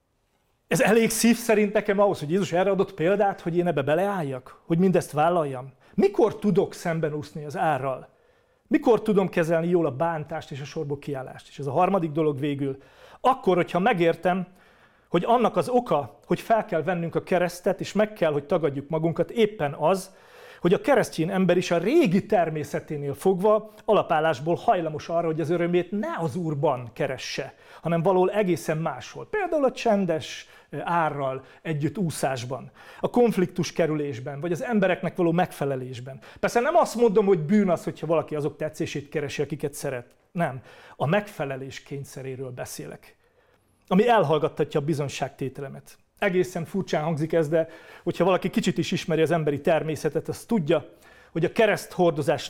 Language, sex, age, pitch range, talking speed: Hungarian, male, 40-59, 150-195 Hz, 160 wpm